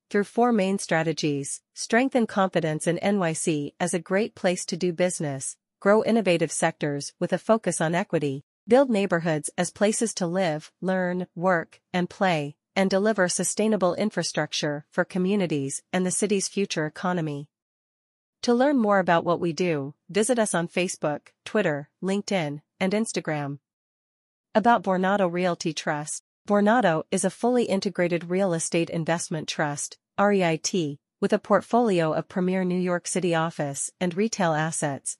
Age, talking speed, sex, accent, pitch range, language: 40-59, 145 wpm, female, American, 160-195 Hz, English